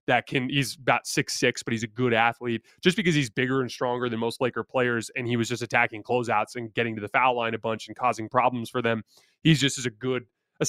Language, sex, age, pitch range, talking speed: English, male, 20-39, 115-140 Hz, 255 wpm